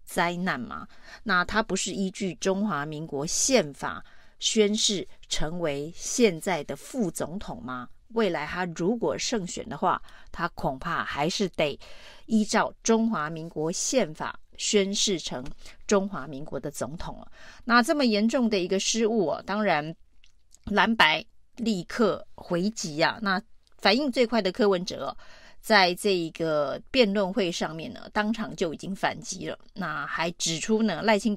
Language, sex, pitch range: Chinese, female, 170-225 Hz